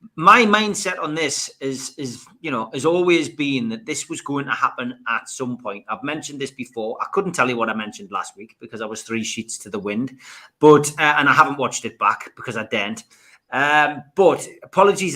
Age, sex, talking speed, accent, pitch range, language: 30-49, male, 220 wpm, British, 125-155 Hz, English